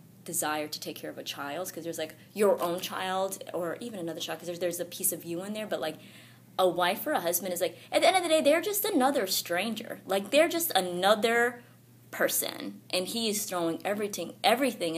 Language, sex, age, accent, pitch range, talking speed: English, female, 20-39, American, 155-200 Hz, 220 wpm